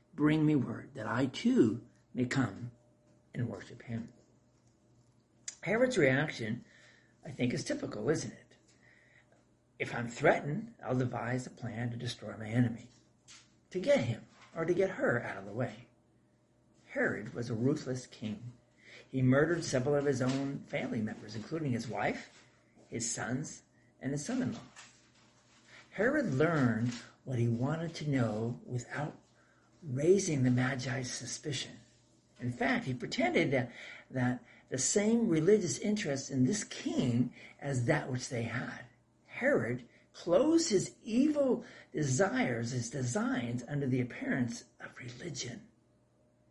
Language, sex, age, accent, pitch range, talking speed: English, male, 50-69, American, 120-145 Hz, 135 wpm